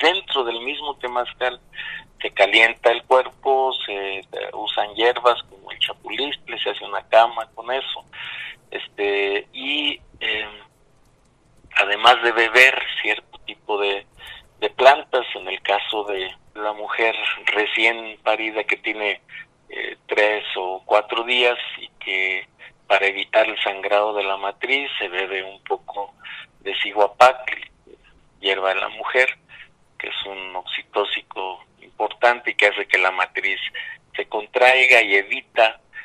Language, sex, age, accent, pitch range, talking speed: English, male, 50-69, Mexican, 100-125 Hz, 135 wpm